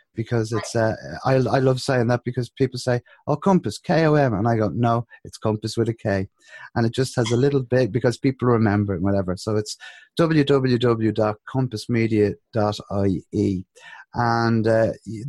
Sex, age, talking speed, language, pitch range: male, 30-49, 170 wpm, English, 105-130 Hz